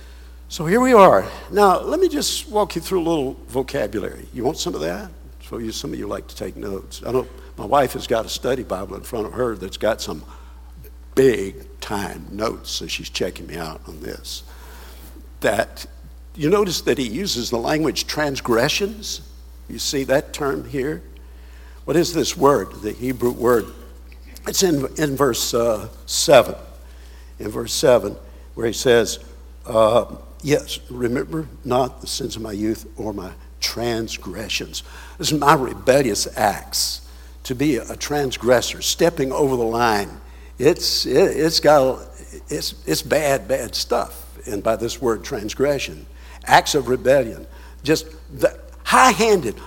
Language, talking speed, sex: English, 155 wpm, male